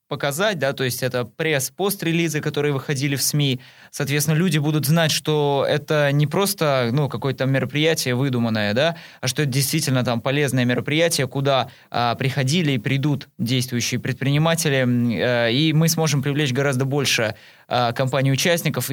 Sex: male